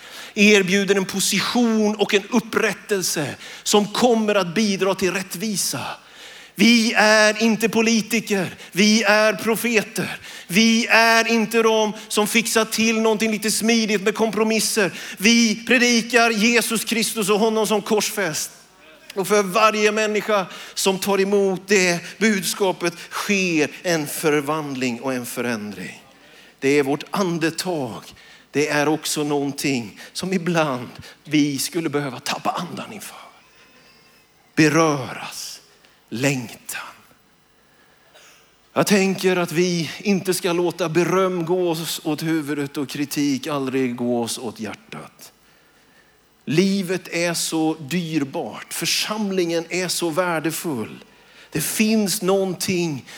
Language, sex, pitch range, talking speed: Swedish, male, 160-215 Hz, 115 wpm